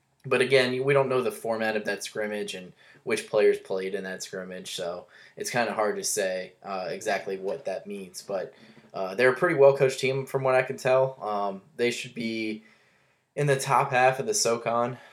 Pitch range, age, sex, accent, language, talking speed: 100-140 Hz, 10-29, male, American, English, 205 wpm